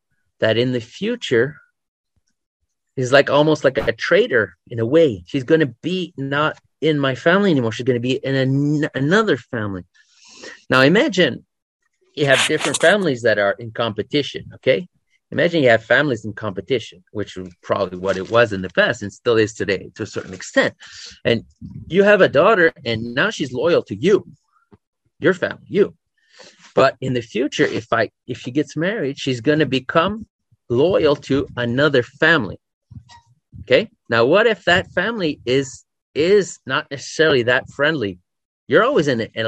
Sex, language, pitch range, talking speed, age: male, English, 110-155 Hz, 170 wpm, 30-49